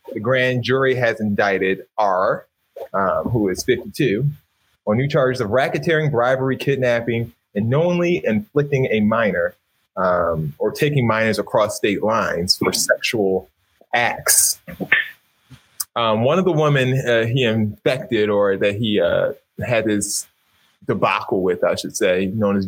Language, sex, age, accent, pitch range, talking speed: English, male, 20-39, American, 95-125 Hz, 140 wpm